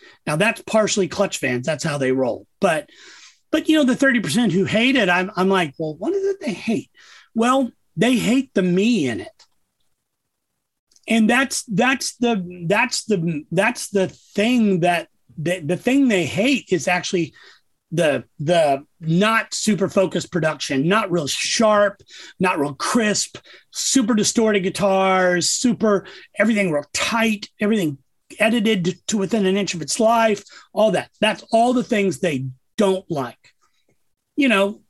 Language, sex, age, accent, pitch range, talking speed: English, male, 40-59, American, 180-230 Hz, 155 wpm